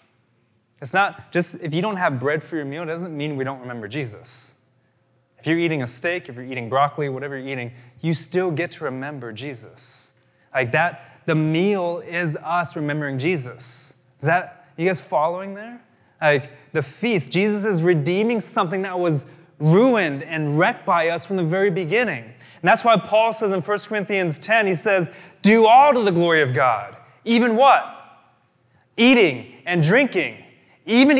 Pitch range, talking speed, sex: 150-210 Hz, 175 wpm, male